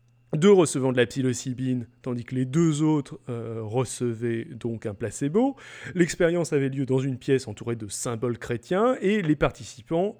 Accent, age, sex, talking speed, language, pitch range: French, 30-49, male, 165 wpm, French, 120-155 Hz